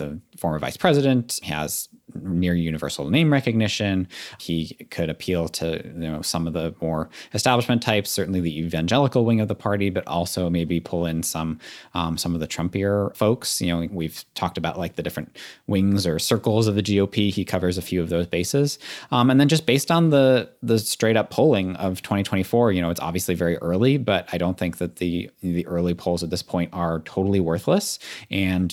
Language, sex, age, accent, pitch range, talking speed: English, male, 30-49, American, 85-105 Hz, 200 wpm